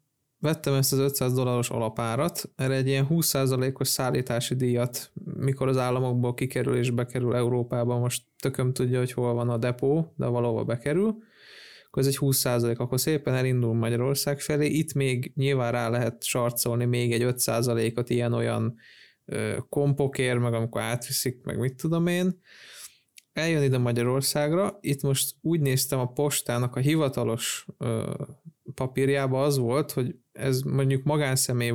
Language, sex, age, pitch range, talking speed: Hungarian, male, 20-39, 120-140 Hz, 145 wpm